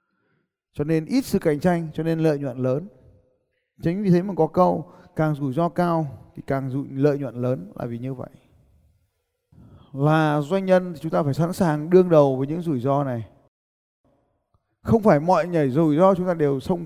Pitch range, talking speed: 135-180 Hz, 200 wpm